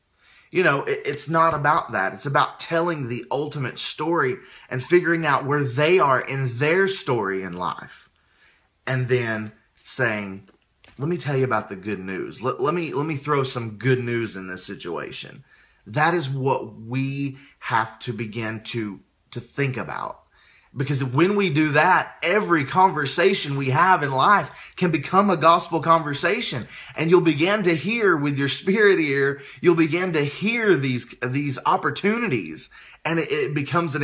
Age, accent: 30-49, American